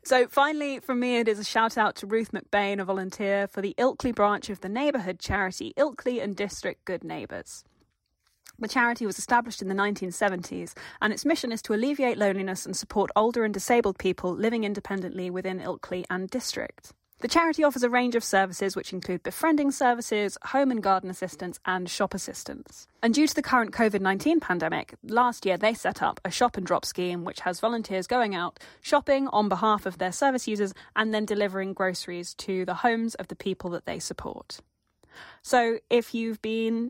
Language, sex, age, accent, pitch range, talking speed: English, female, 20-39, British, 190-235 Hz, 190 wpm